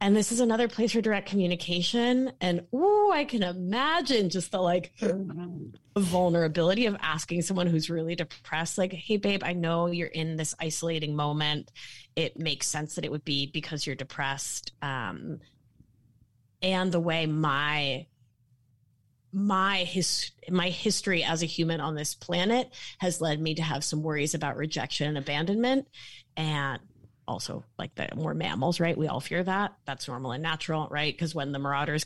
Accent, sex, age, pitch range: American, female, 30-49, 145-180 Hz